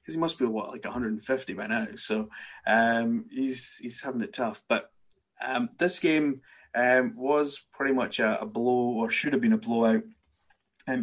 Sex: male